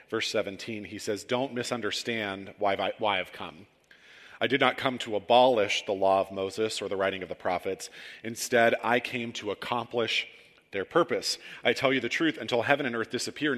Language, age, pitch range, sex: English, 40-59, 105-130 Hz, male